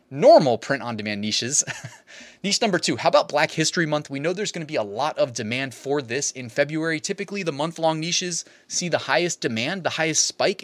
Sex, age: male, 20-39